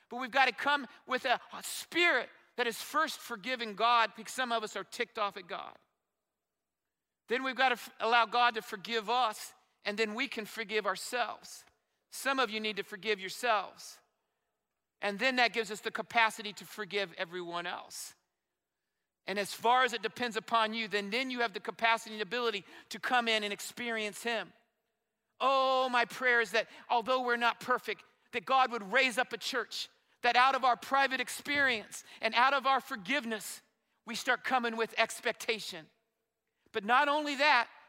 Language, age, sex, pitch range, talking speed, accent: English, 50-69, male, 225-265 Hz, 180 wpm, American